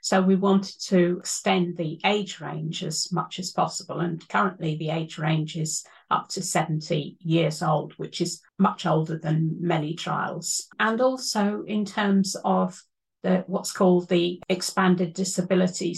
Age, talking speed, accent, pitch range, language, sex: 50-69, 155 wpm, British, 170-190 Hz, English, female